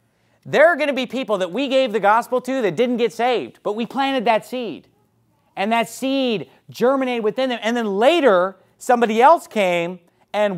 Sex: male